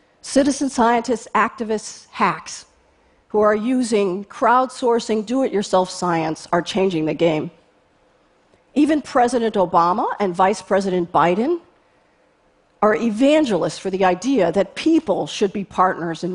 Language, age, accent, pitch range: Chinese, 50-69, American, 175-230 Hz